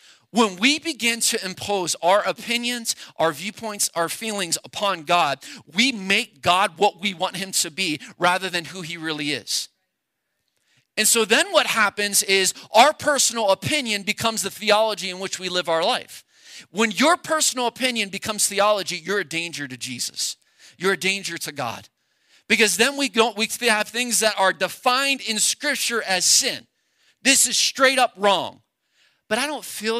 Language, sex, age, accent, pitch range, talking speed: English, male, 40-59, American, 195-260 Hz, 170 wpm